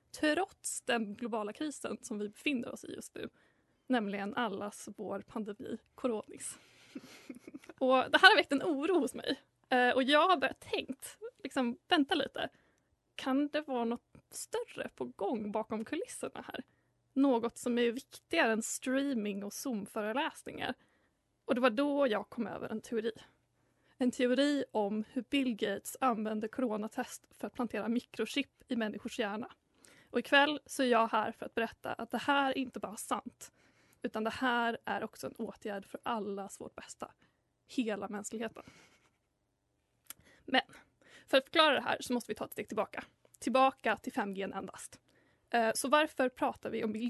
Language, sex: Swedish, female